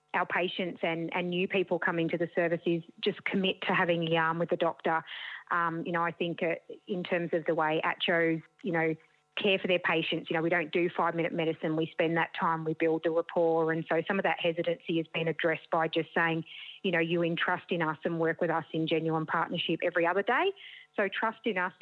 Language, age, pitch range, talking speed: English, 30-49, 165-180 Hz, 230 wpm